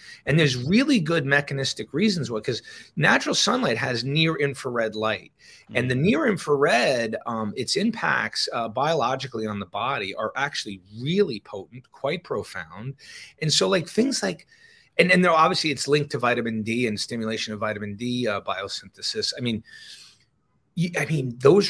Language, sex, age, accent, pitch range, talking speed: English, male, 30-49, American, 115-175 Hz, 160 wpm